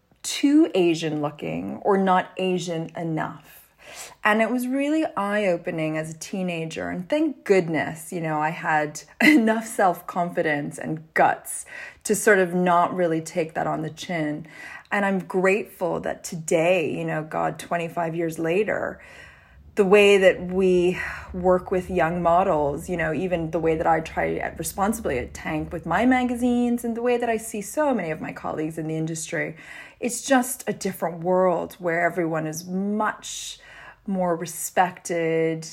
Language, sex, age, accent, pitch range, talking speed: English, female, 20-39, American, 160-195 Hz, 160 wpm